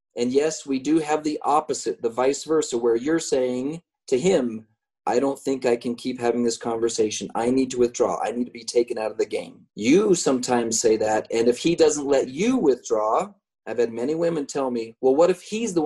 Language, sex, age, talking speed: English, male, 30-49, 225 wpm